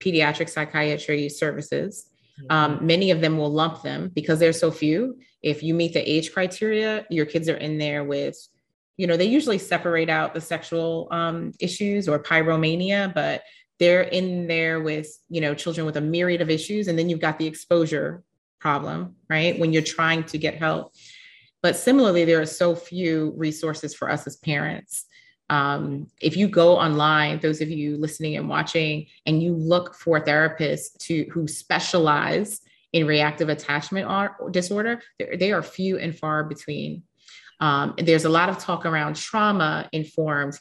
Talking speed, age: 170 wpm, 30-49